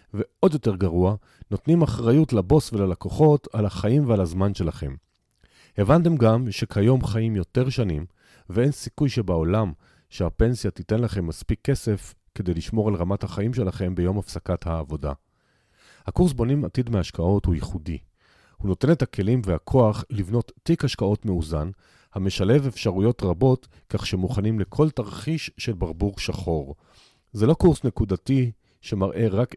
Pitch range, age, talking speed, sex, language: 90-125 Hz, 40-59, 135 wpm, male, Hebrew